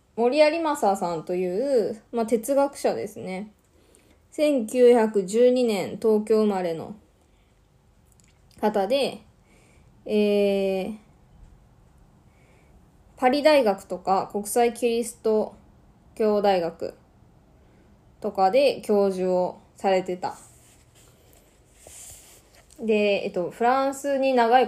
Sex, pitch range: female, 180-235 Hz